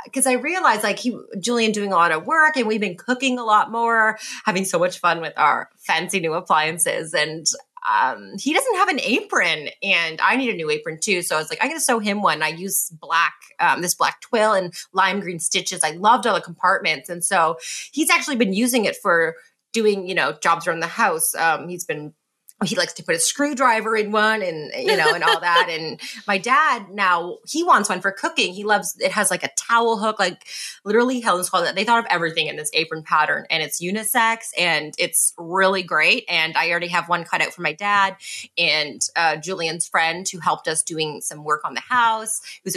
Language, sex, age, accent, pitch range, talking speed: English, female, 30-49, American, 175-250 Hz, 225 wpm